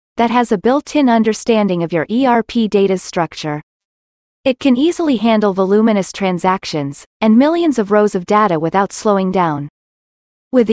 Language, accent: English, American